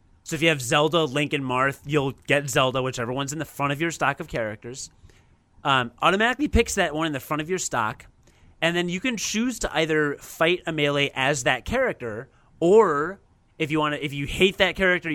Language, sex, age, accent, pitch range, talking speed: English, male, 30-49, American, 125-165 Hz, 215 wpm